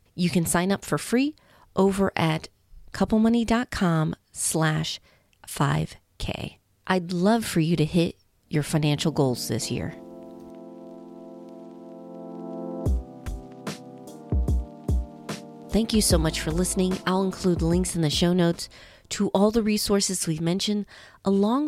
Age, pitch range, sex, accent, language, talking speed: 40-59, 155-210 Hz, female, American, English, 115 wpm